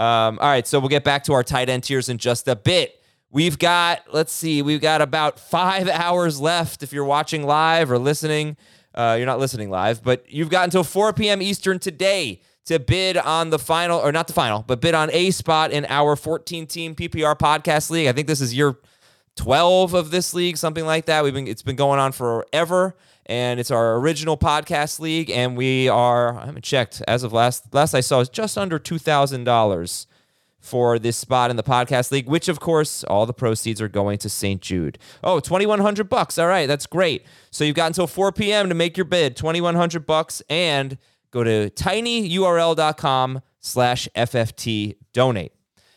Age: 20-39